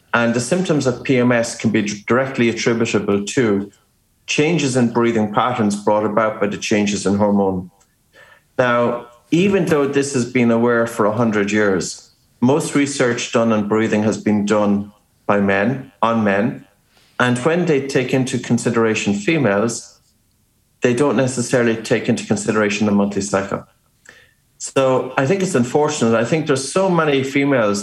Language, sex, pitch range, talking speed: English, male, 105-130 Hz, 150 wpm